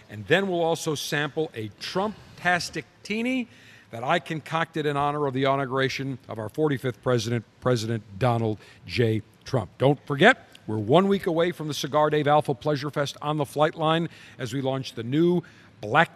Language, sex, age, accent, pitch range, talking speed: English, male, 50-69, American, 125-170 Hz, 170 wpm